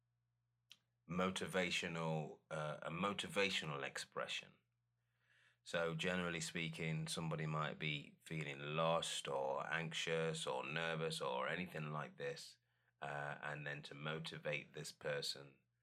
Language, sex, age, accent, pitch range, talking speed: English, male, 30-49, British, 80-120 Hz, 105 wpm